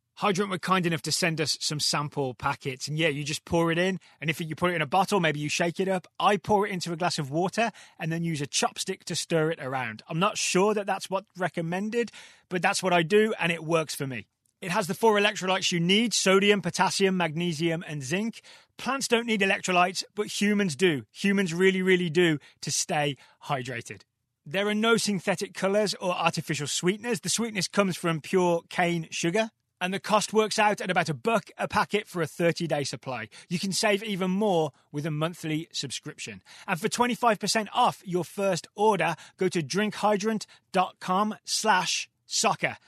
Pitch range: 160-205 Hz